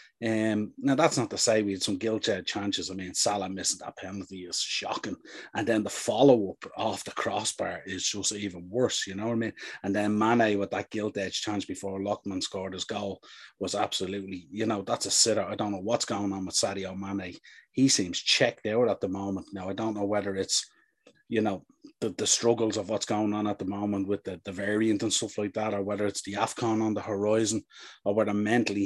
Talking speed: 220 wpm